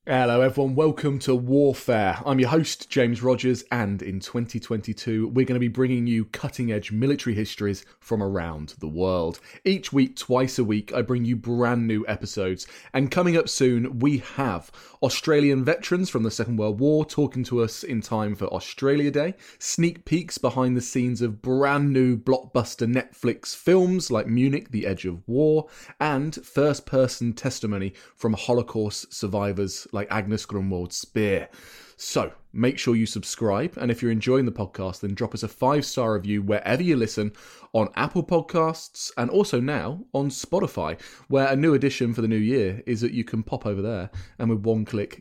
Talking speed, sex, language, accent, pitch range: 175 wpm, male, English, British, 110-135 Hz